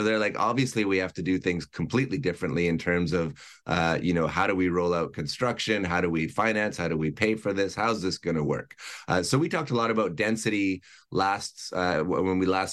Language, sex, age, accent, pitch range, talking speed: English, male, 30-49, American, 90-110 Hz, 240 wpm